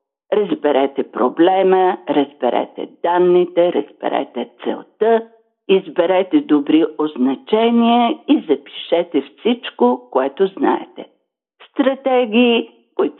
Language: Bulgarian